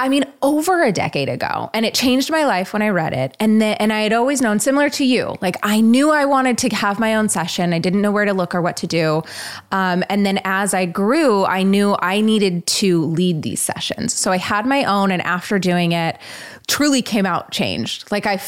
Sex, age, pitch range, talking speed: female, 20-39, 180-230 Hz, 240 wpm